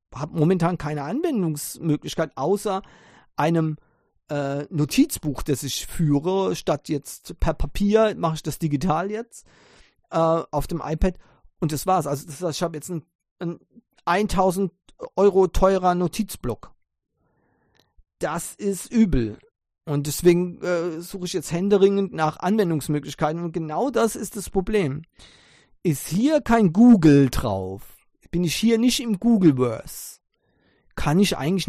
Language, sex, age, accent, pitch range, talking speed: English, male, 40-59, German, 150-190 Hz, 135 wpm